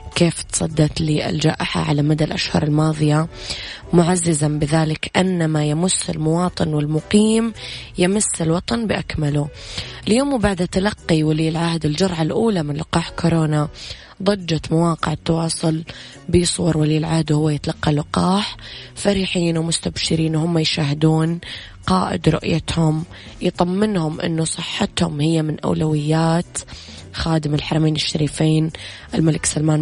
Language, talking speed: English, 105 wpm